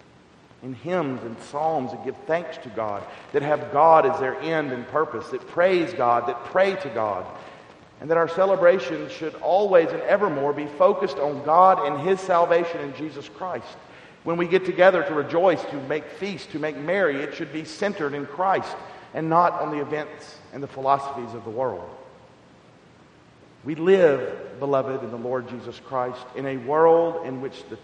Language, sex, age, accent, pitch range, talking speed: English, male, 50-69, American, 130-170 Hz, 185 wpm